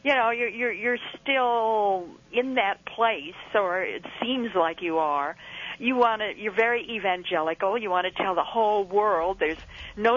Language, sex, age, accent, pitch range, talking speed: English, female, 50-69, American, 185-235 Hz, 175 wpm